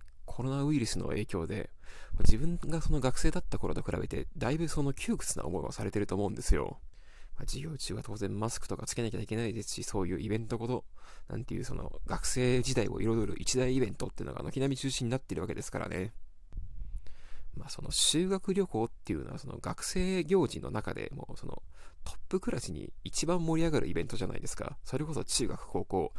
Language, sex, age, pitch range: Japanese, male, 20-39, 95-130 Hz